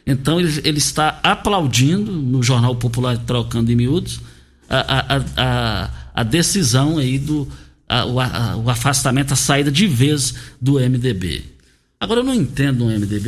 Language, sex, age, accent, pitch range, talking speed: Portuguese, male, 50-69, Brazilian, 120-160 Hz, 165 wpm